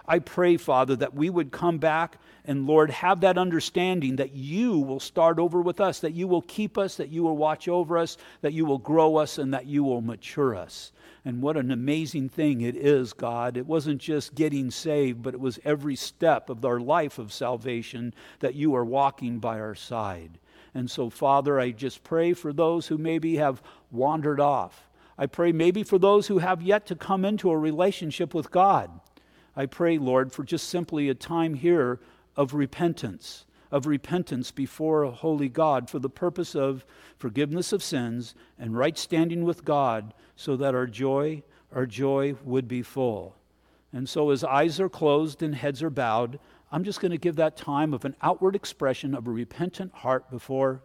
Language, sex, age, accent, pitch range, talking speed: English, male, 50-69, American, 130-165 Hz, 195 wpm